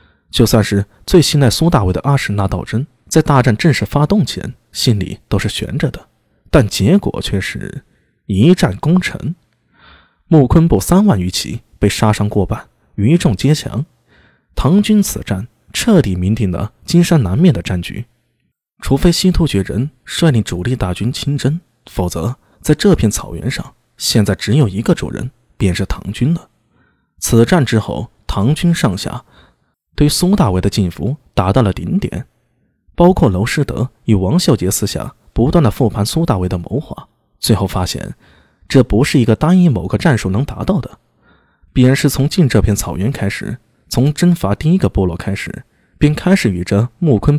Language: Chinese